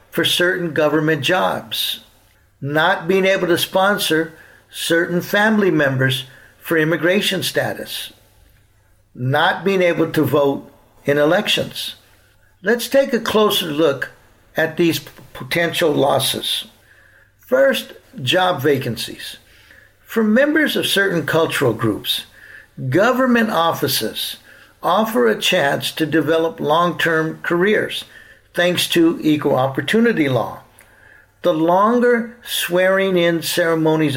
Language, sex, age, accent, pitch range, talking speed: English, male, 60-79, American, 135-180 Hz, 105 wpm